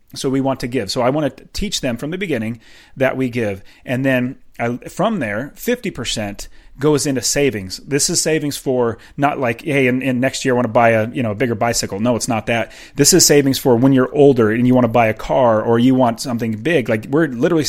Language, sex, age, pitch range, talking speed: English, male, 30-49, 115-145 Hz, 250 wpm